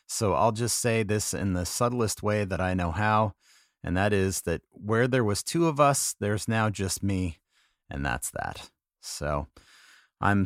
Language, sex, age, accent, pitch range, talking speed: English, male, 30-49, American, 90-115 Hz, 185 wpm